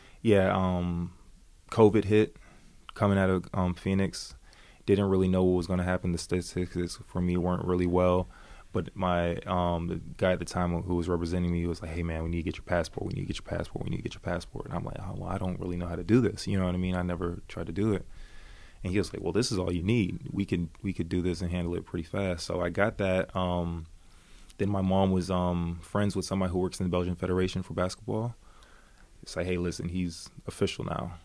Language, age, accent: Swedish, 20-39, American